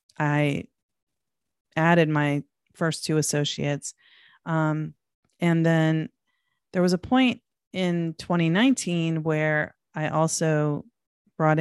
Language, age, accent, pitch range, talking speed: English, 30-49, American, 150-190 Hz, 100 wpm